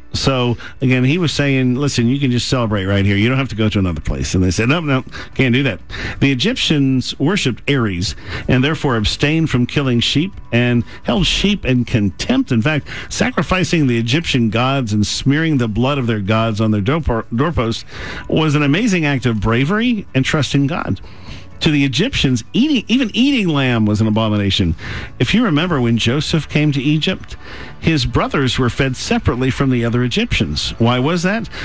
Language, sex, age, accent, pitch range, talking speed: English, male, 50-69, American, 110-145 Hz, 185 wpm